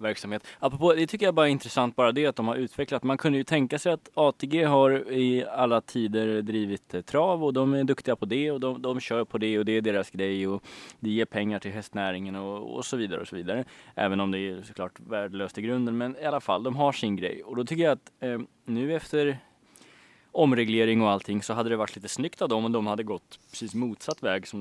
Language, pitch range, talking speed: Swedish, 100-125 Hz, 245 wpm